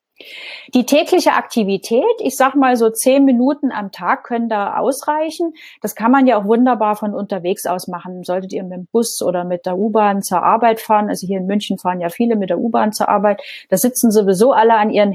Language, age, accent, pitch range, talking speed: German, 30-49, German, 190-240 Hz, 215 wpm